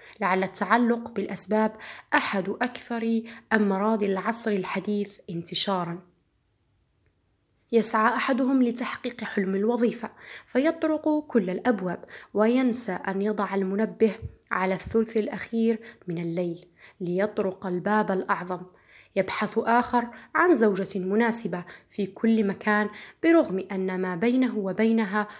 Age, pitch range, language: 20-39, 190-225 Hz, Arabic